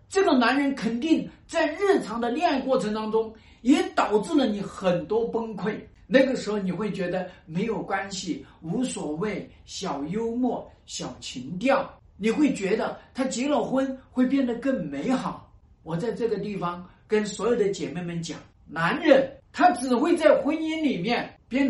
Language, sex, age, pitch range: Chinese, male, 50-69, 215-305 Hz